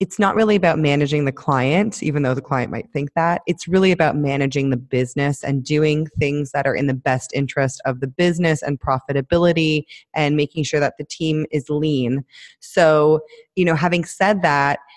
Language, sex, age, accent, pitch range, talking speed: English, female, 20-39, American, 140-170 Hz, 195 wpm